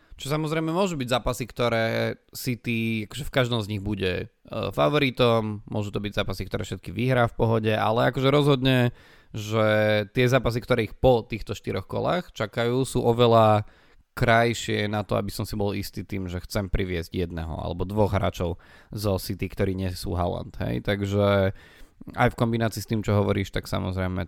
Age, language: 20-39, Slovak